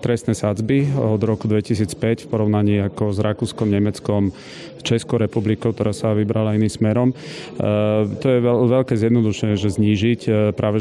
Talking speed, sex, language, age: 140 wpm, male, Slovak, 30-49